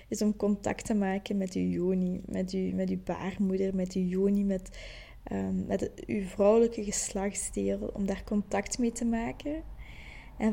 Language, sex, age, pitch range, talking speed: Dutch, female, 20-39, 195-235 Hz, 160 wpm